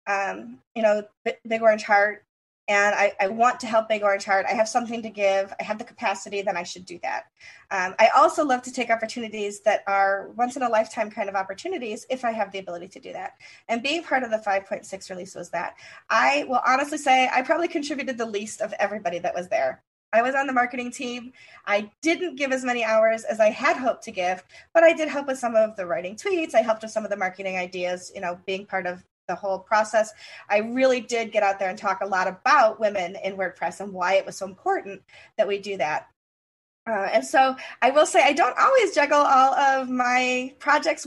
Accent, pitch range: American, 200-270 Hz